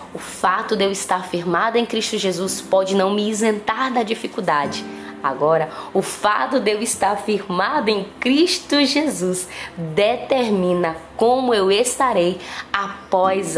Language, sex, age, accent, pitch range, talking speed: Portuguese, female, 20-39, Brazilian, 175-205 Hz, 135 wpm